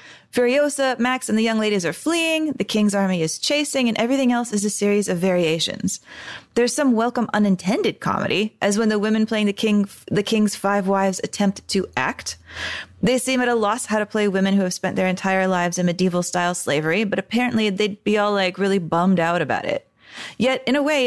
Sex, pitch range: female, 190-225 Hz